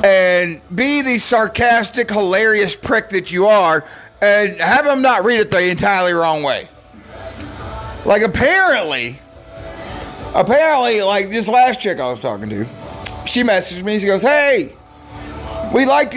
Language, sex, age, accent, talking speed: English, male, 40-59, American, 140 wpm